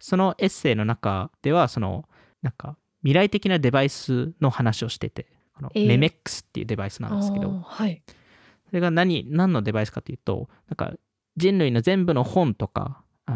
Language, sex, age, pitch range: Japanese, male, 20-39, 110-150 Hz